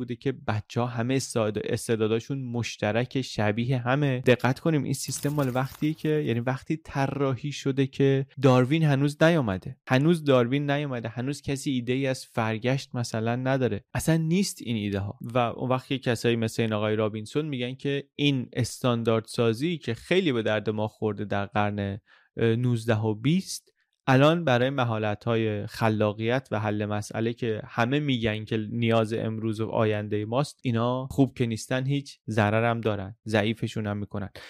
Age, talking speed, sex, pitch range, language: 20-39, 155 wpm, male, 110-135 Hz, Persian